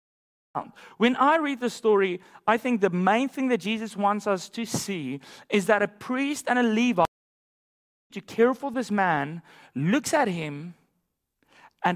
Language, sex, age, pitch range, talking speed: English, male, 30-49, 150-210 Hz, 155 wpm